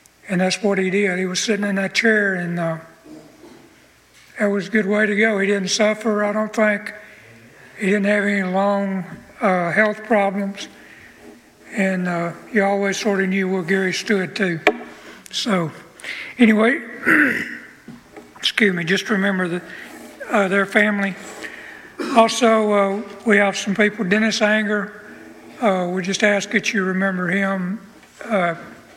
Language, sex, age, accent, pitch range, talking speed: English, male, 60-79, American, 185-210 Hz, 145 wpm